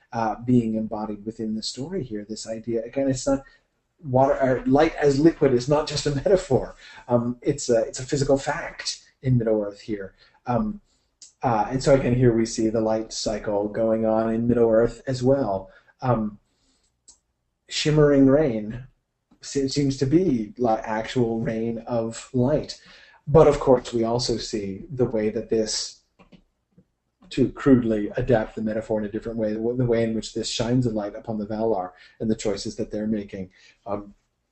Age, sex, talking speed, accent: 30-49, male, 165 wpm, American